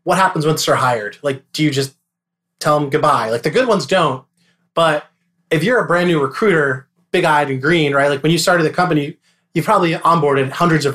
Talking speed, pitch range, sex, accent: 215 wpm, 145-175 Hz, male, American